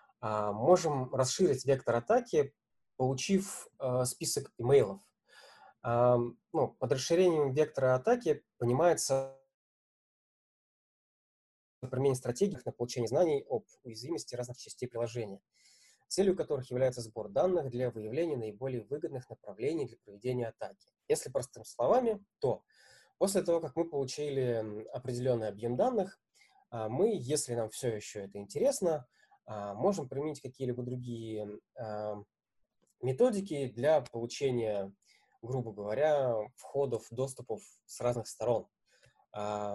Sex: male